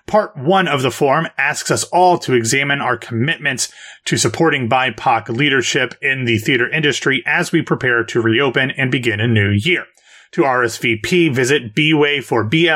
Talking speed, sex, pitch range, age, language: 165 wpm, male, 120-165 Hz, 30-49, English